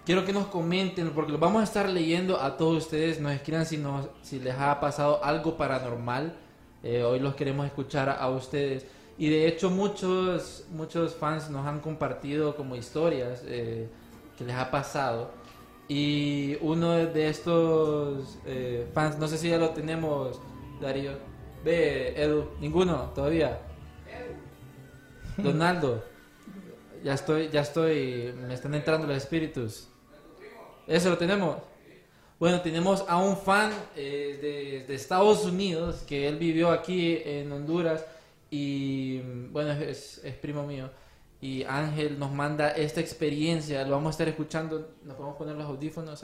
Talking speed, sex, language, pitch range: 150 wpm, male, Spanish, 140-165 Hz